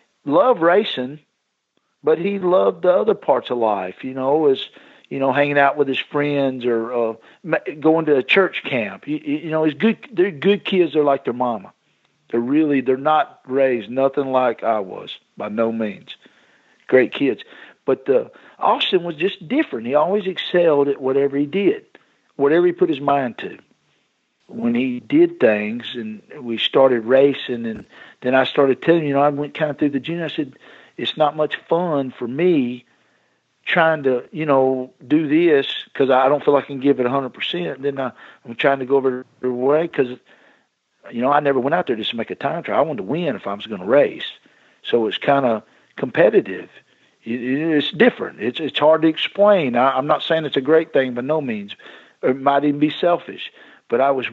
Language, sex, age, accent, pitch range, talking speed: English, male, 50-69, American, 130-175 Hz, 200 wpm